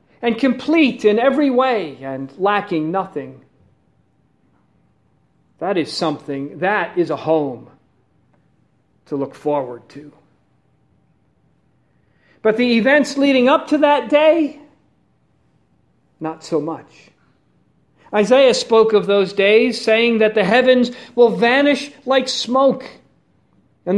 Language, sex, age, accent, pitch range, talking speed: English, male, 40-59, American, 150-240 Hz, 110 wpm